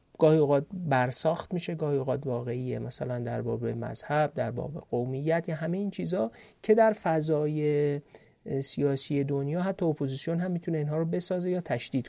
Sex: male